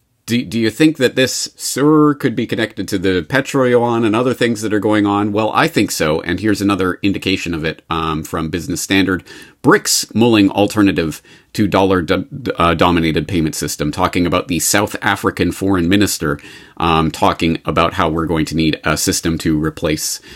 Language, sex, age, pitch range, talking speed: English, male, 40-59, 90-115 Hz, 185 wpm